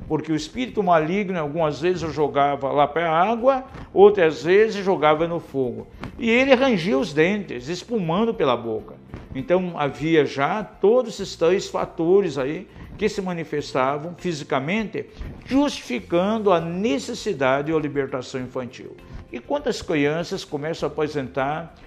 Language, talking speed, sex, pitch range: Portuguese, 135 wpm, male, 145-190 Hz